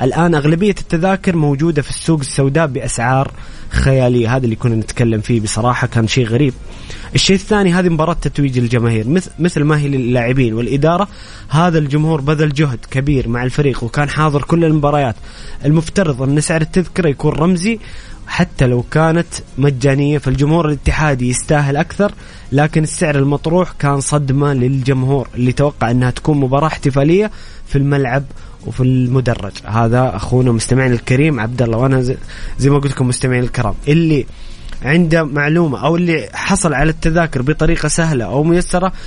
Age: 20-39